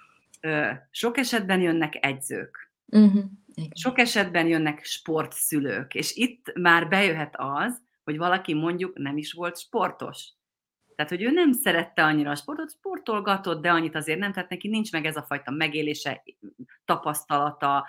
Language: Hungarian